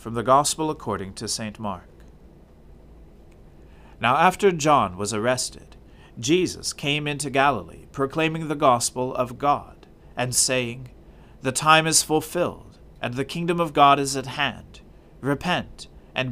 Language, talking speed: English, 135 wpm